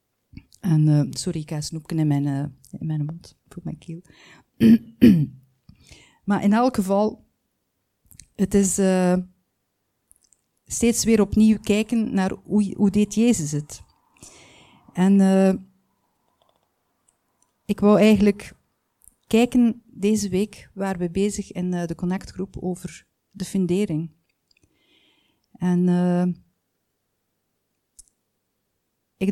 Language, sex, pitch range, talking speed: Dutch, female, 170-205 Hz, 110 wpm